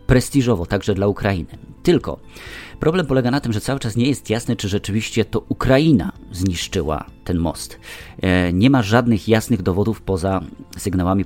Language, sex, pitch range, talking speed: Polish, male, 90-115 Hz, 155 wpm